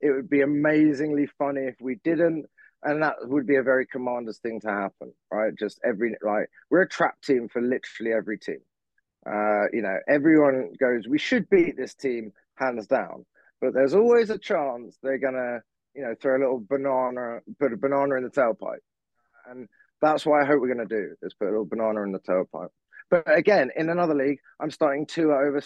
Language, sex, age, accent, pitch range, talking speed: English, male, 20-39, British, 110-150 Hz, 205 wpm